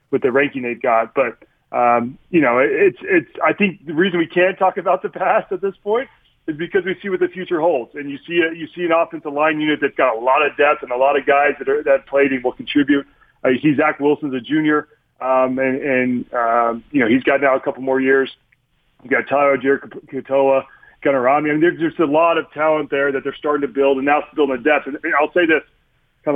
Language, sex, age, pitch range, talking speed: English, male, 30-49, 135-160 Hz, 255 wpm